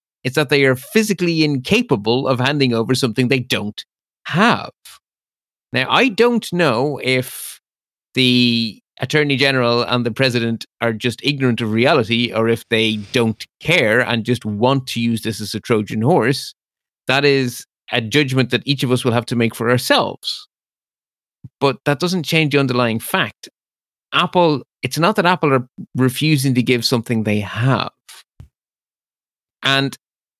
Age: 30-49